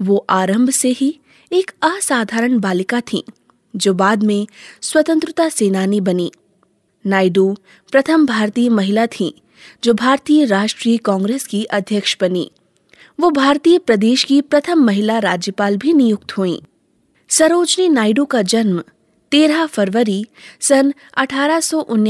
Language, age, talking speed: Hindi, 20-39, 120 wpm